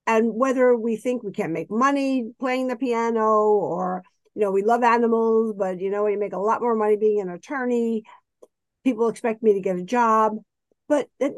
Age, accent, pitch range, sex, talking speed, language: 50-69, American, 210-265 Hz, female, 200 wpm, English